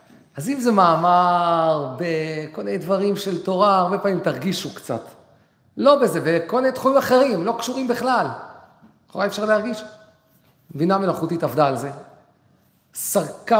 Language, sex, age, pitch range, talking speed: Hebrew, male, 40-59, 160-210 Hz, 140 wpm